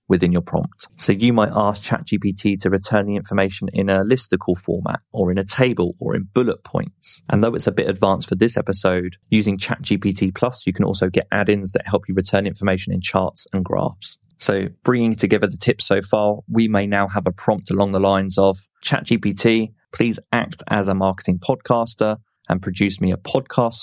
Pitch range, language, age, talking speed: 95-110 Hz, English, 30-49, 200 wpm